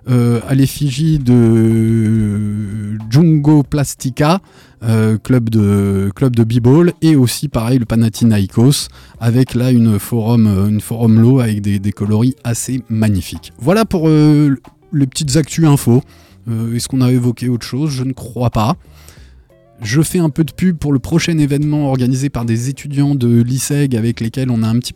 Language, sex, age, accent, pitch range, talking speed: French, male, 20-39, French, 115-140 Hz, 170 wpm